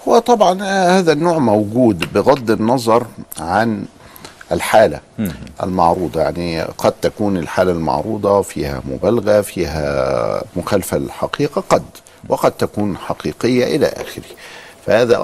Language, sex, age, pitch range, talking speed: Arabic, male, 50-69, 90-120 Hz, 105 wpm